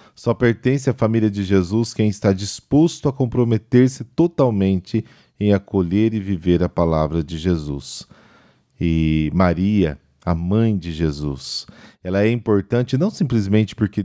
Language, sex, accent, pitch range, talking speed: Portuguese, male, Brazilian, 80-110 Hz, 135 wpm